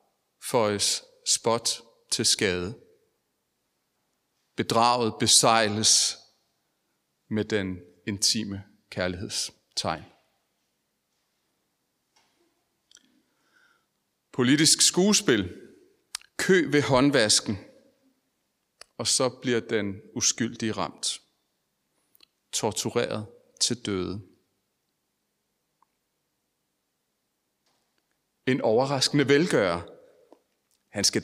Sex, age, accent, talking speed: male, 40-59, native, 55 wpm